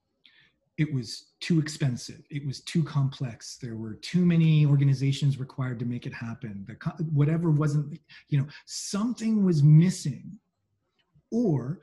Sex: male